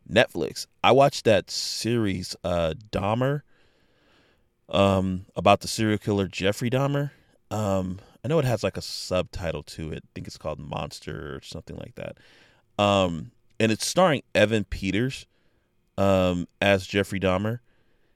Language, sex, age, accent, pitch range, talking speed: English, male, 30-49, American, 90-120 Hz, 140 wpm